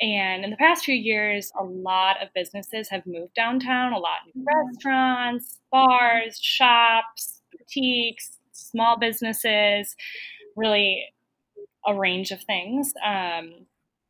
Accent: American